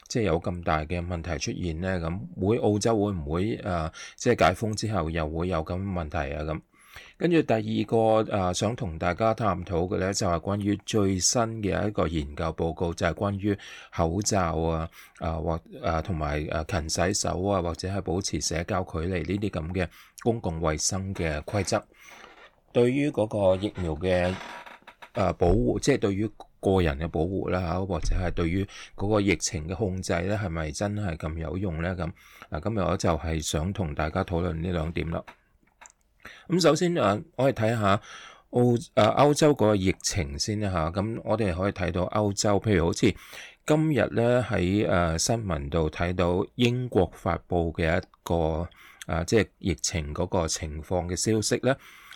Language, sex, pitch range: English, male, 85-105 Hz